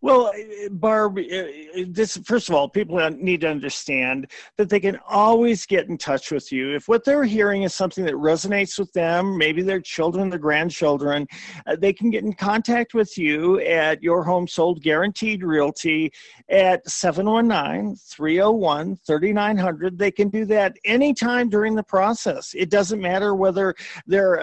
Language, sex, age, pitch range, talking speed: English, male, 40-59, 170-215 Hz, 150 wpm